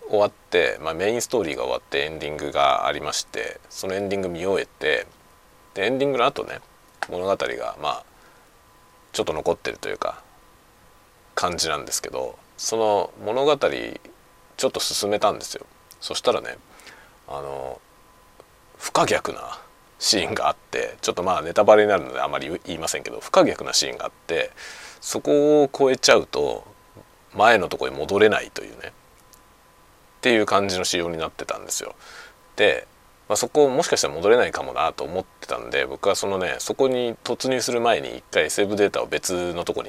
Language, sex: Japanese, male